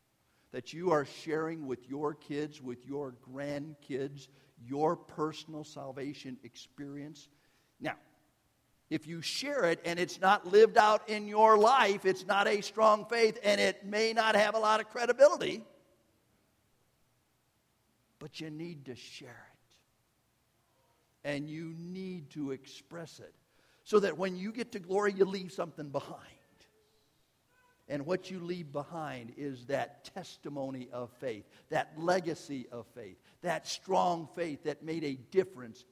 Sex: male